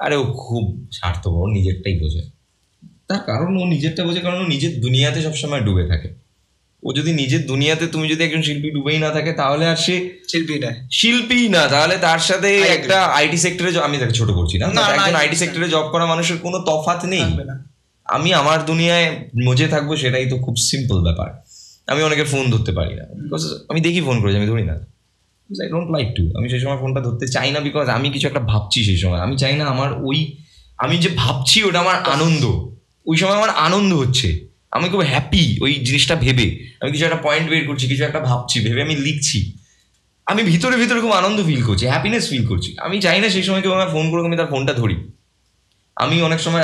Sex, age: male, 20-39